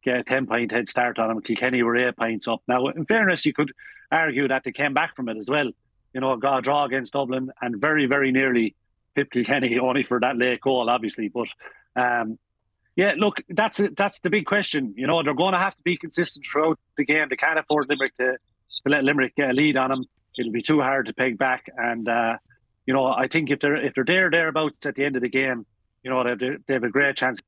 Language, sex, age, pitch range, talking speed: English, male, 30-49, 120-145 Hz, 240 wpm